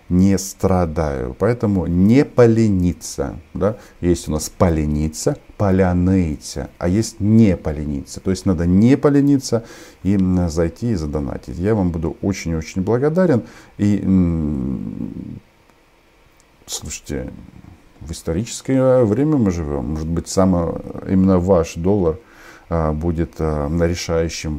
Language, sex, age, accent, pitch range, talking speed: Russian, male, 50-69, native, 80-100 Hz, 110 wpm